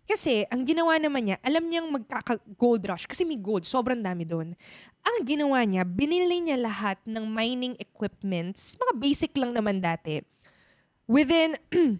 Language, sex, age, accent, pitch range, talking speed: Filipino, female, 20-39, native, 200-300 Hz, 150 wpm